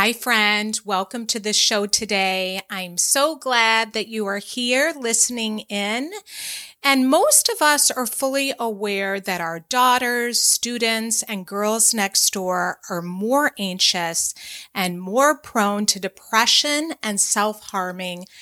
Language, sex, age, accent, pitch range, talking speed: English, female, 30-49, American, 190-240 Hz, 135 wpm